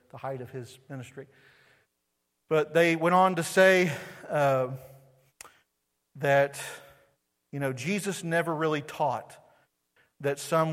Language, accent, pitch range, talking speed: English, American, 115-160 Hz, 110 wpm